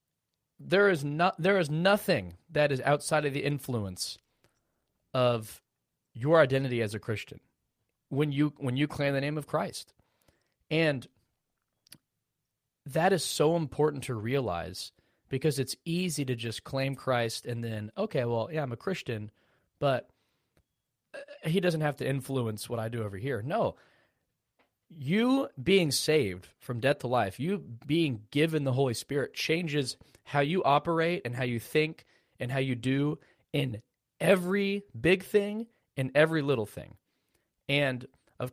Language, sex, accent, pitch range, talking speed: English, male, American, 115-155 Hz, 150 wpm